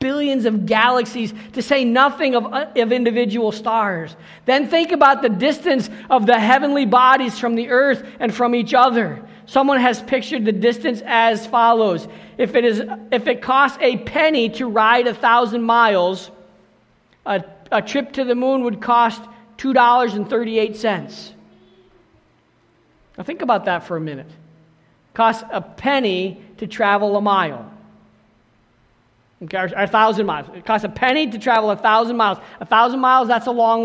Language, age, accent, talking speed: English, 50-69, American, 150 wpm